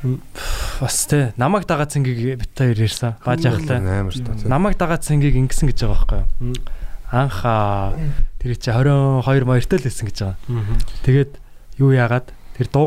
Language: Korean